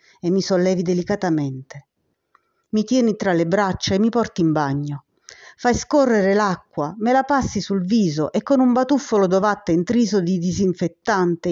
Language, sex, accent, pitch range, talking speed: Italian, female, native, 175-230 Hz, 155 wpm